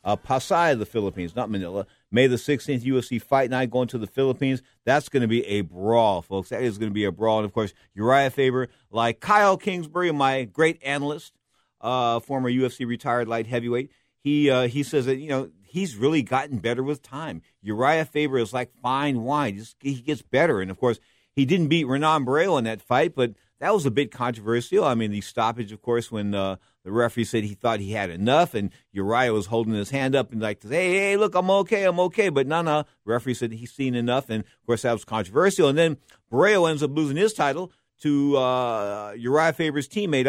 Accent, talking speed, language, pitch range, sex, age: American, 220 wpm, English, 115-145 Hz, male, 50-69